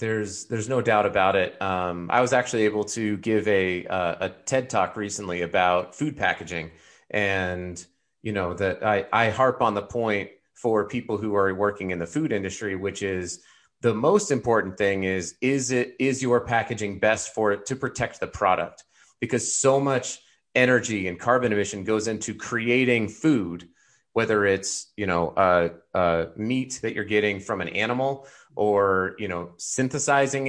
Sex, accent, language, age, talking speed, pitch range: male, American, English, 30-49, 175 wpm, 95-125 Hz